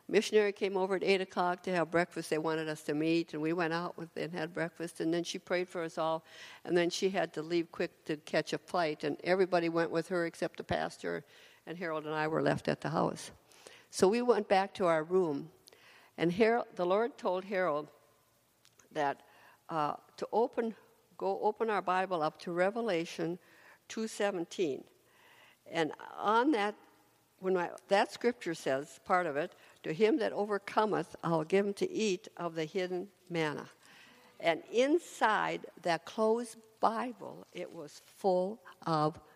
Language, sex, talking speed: English, female, 180 wpm